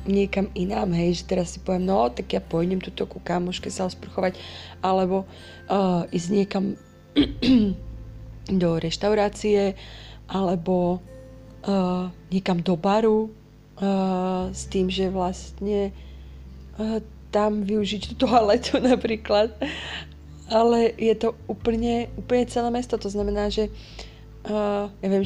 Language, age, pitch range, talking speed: Slovak, 30-49, 170-200 Hz, 120 wpm